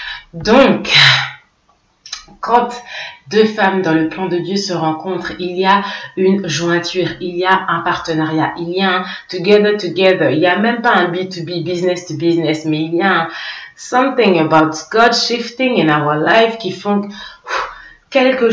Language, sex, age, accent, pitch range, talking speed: French, female, 30-49, French, 160-200 Hz, 160 wpm